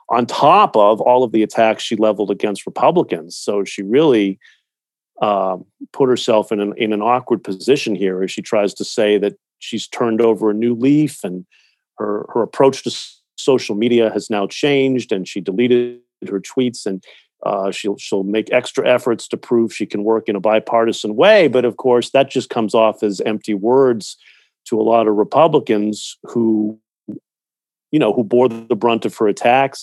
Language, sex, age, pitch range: English, male, 40-59, 105-125 Hz